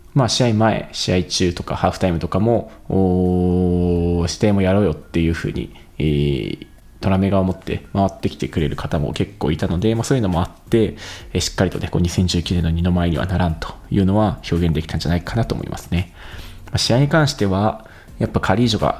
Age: 20-39